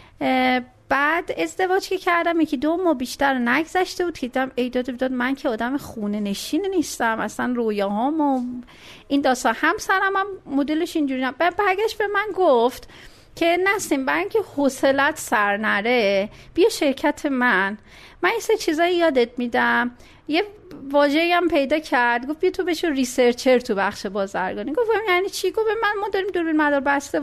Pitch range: 235-340 Hz